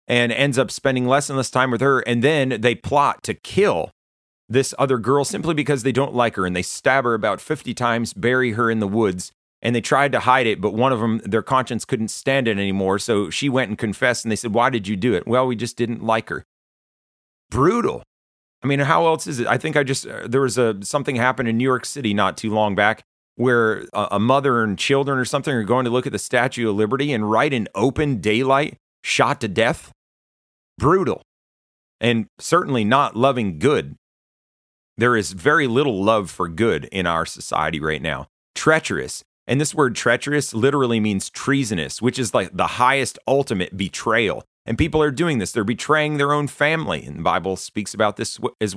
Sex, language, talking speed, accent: male, English, 210 wpm, American